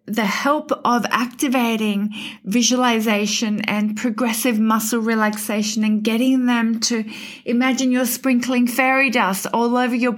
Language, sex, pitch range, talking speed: English, female, 225-265 Hz, 125 wpm